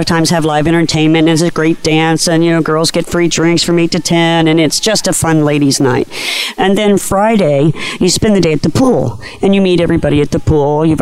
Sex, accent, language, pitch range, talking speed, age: female, American, English, 150-185 Hz, 245 wpm, 50-69